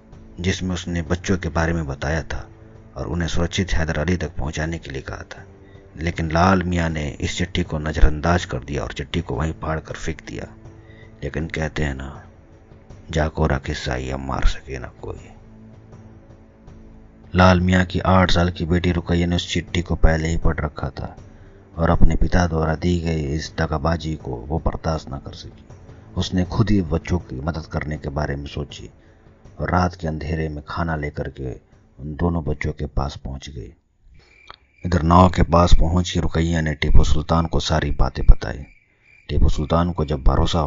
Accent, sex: native, male